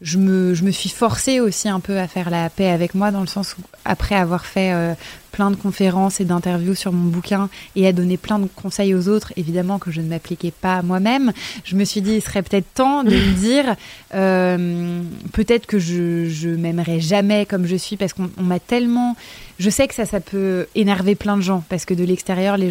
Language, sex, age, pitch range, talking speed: French, female, 20-39, 180-210 Hz, 225 wpm